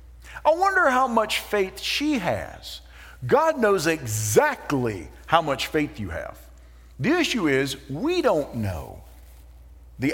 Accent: American